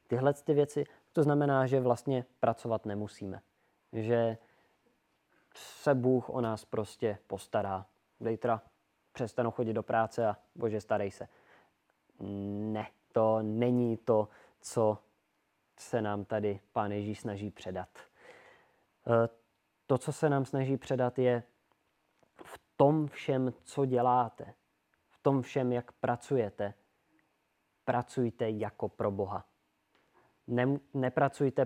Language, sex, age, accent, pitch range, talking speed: Czech, male, 20-39, native, 110-130 Hz, 110 wpm